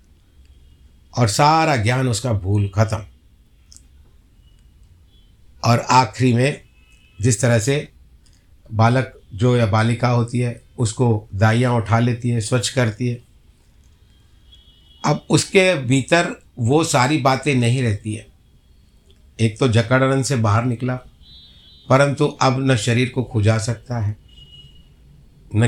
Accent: native